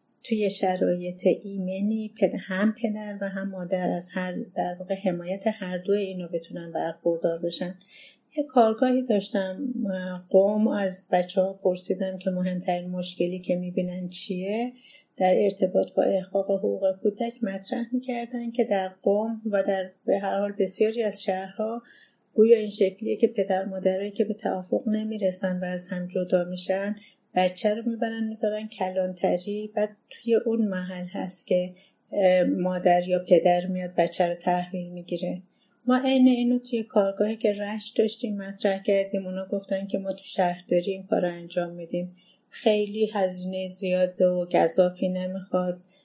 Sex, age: female, 30-49